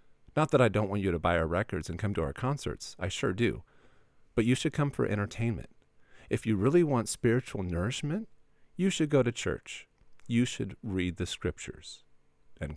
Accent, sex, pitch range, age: American, male, 90-135 Hz, 50-69